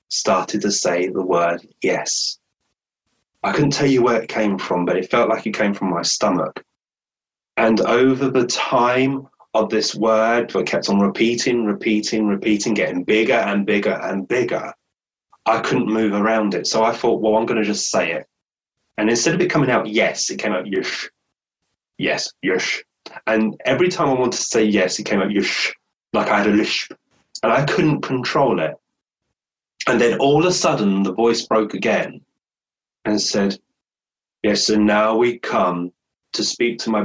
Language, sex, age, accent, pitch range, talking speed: English, male, 20-39, British, 100-115 Hz, 180 wpm